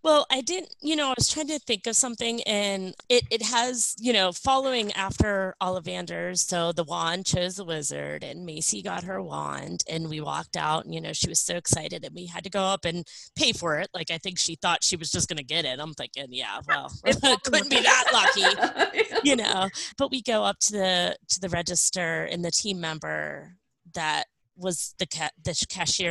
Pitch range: 160-205 Hz